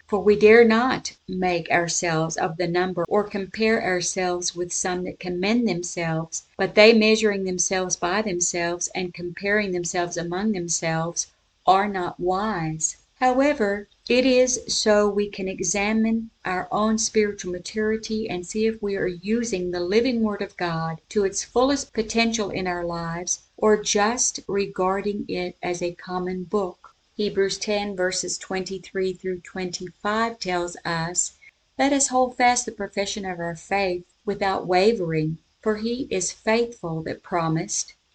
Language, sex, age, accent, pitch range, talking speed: English, female, 50-69, American, 180-215 Hz, 145 wpm